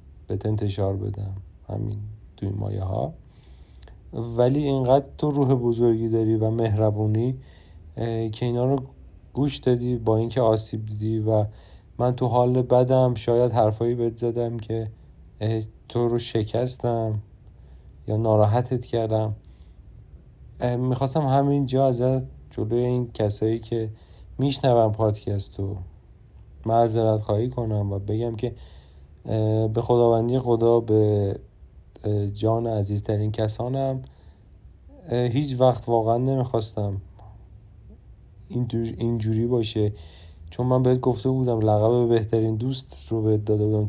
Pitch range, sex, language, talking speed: 105-125 Hz, male, Persian, 110 wpm